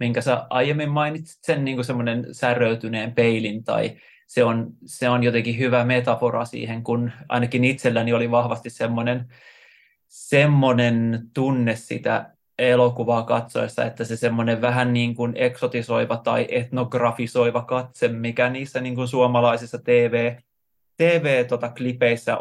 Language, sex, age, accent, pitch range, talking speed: Finnish, male, 20-39, native, 115-125 Hz, 110 wpm